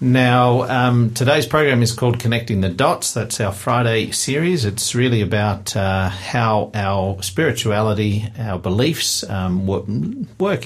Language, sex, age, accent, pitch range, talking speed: English, male, 50-69, Australian, 95-120 Hz, 135 wpm